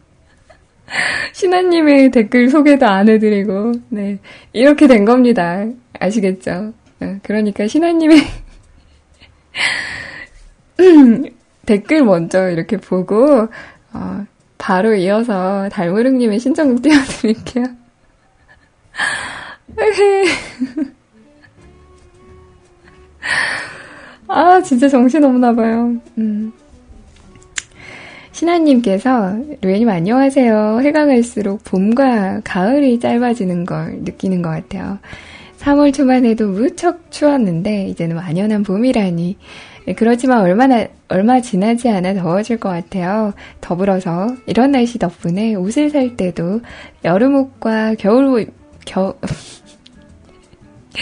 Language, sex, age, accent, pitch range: Korean, female, 20-39, native, 195-265 Hz